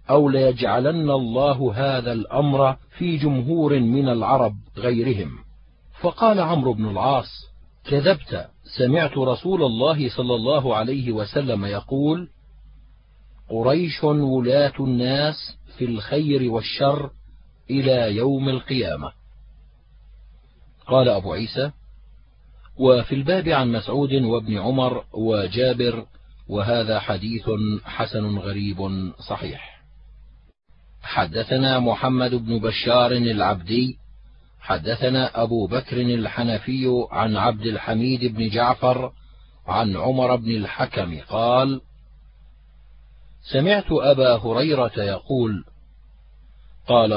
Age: 50-69